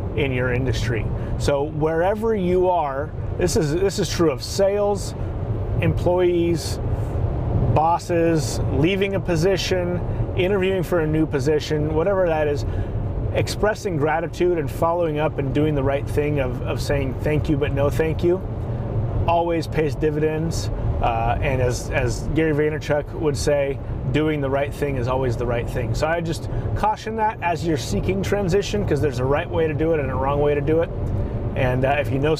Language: English